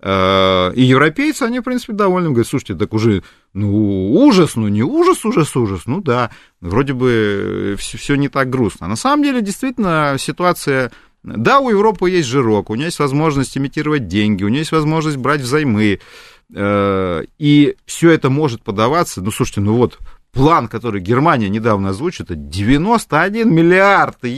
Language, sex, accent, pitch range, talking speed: Russian, male, native, 115-175 Hz, 160 wpm